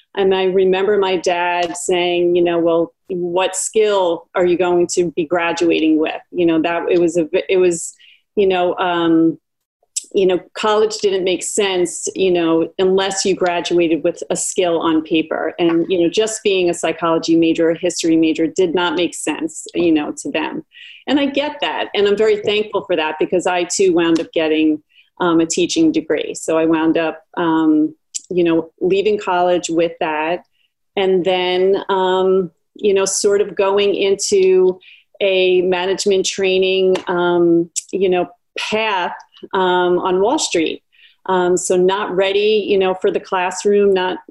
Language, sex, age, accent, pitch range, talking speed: English, female, 40-59, American, 170-200 Hz, 170 wpm